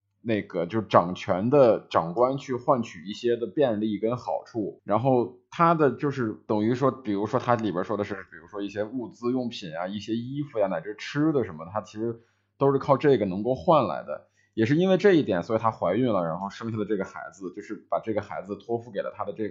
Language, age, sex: Chinese, 20-39, male